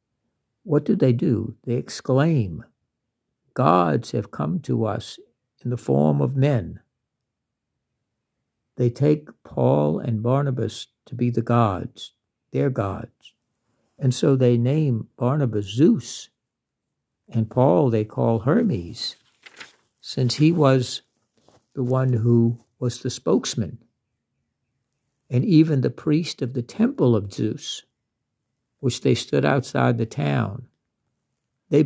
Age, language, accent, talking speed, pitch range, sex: 60-79, English, American, 120 wpm, 115-135 Hz, male